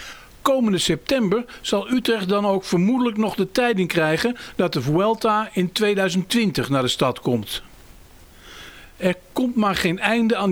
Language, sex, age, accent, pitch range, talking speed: Dutch, male, 50-69, Dutch, 160-220 Hz, 150 wpm